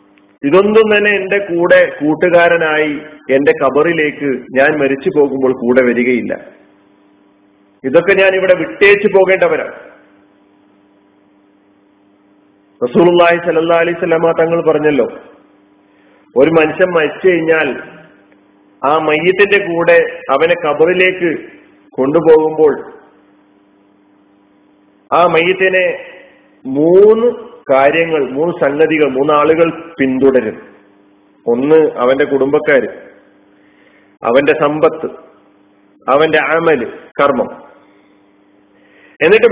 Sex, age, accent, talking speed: male, 40-59, native, 75 wpm